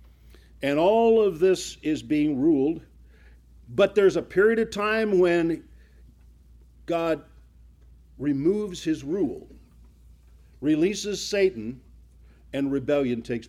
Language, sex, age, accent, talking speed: English, male, 60-79, American, 100 wpm